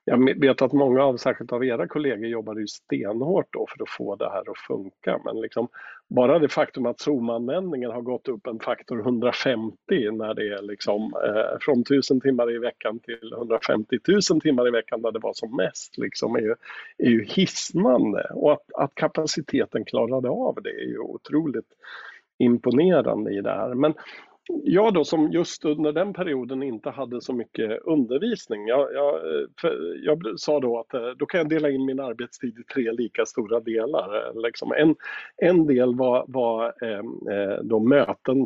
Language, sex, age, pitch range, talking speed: Swedish, male, 50-69, 115-155 Hz, 170 wpm